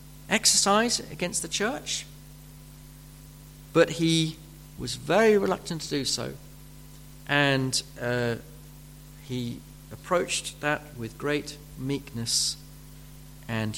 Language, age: English, 50-69